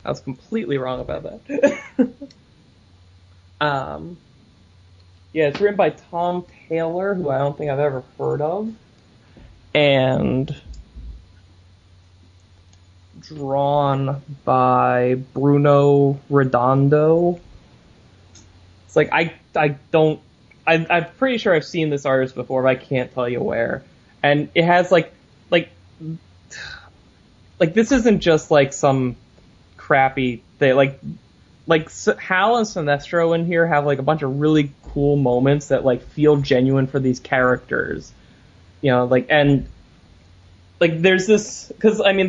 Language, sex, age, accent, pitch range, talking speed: English, male, 20-39, American, 125-155 Hz, 130 wpm